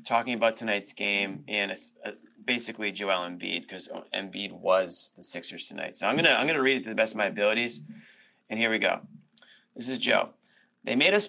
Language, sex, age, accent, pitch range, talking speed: English, male, 30-49, American, 110-130 Hz, 190 wpm